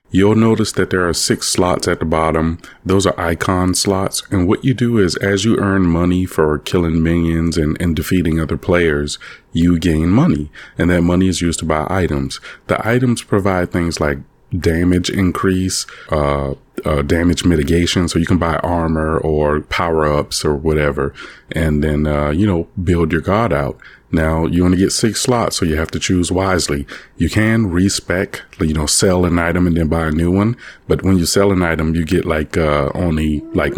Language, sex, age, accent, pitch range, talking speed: English, male, 30-49, American, 80-95 Hz, 195 wpm